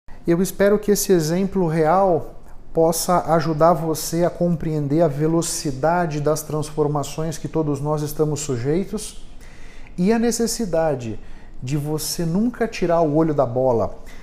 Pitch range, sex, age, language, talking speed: 160-200 Hz, male, 50-69, Portuguese, 130 wpm